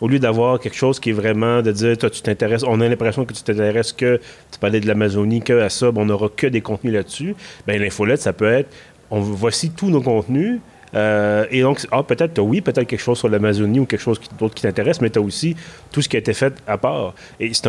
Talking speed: 260 wpm